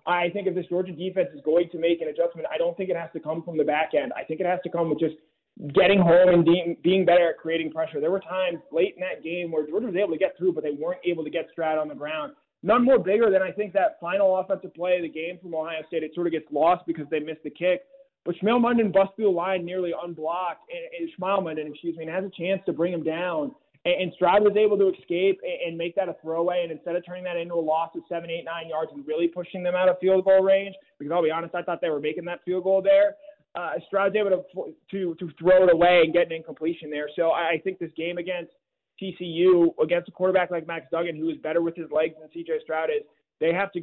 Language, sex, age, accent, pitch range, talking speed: English, male, 20-39, American, 160-190 Hz, 265 wpm